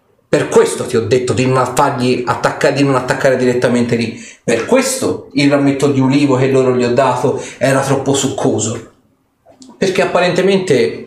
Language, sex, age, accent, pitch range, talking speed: Italian, male, 30-49, native, 120-175 Hz, 155 wpm